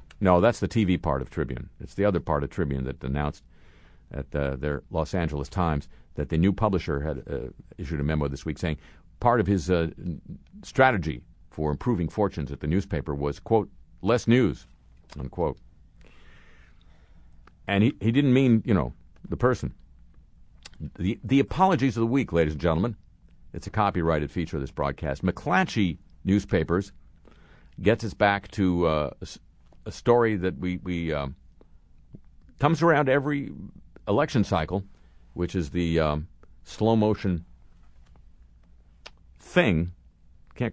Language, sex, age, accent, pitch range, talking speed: English, male, 50-69, American, 75-105 Hz, 145 wpm